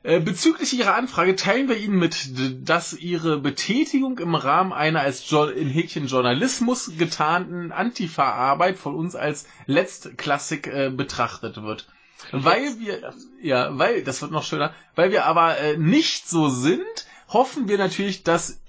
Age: 20-39